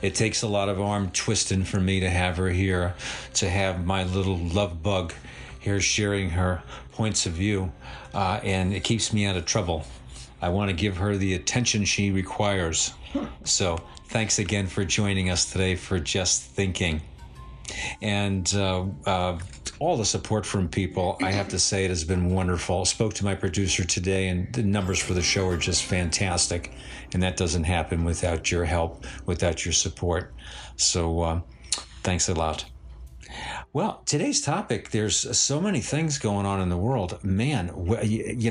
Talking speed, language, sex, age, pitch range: 175 wpm, English, male, 50-69, 90-105 Hz